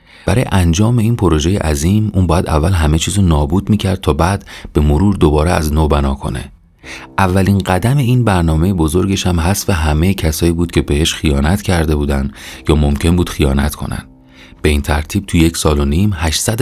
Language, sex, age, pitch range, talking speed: Persian, male, 30-49, 75-95 Hz, 180 wpm